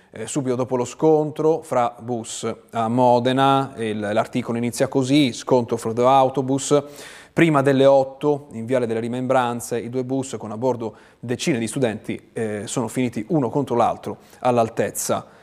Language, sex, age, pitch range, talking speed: Italian, male, 30-49, 115-140 Hz, 155 wpm